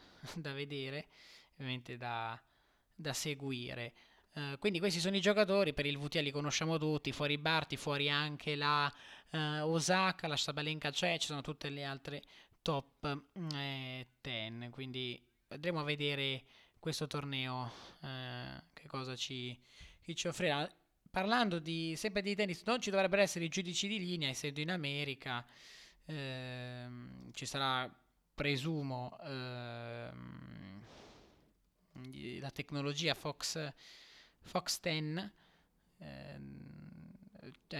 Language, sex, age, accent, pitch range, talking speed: Italian, male, 20-39, native, 130-160 Hz, 120 wpm